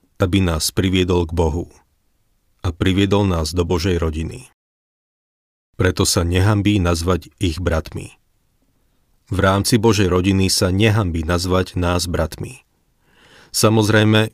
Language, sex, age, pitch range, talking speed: Slovak, male, 40-59, 85-100 Hz, 115 wpm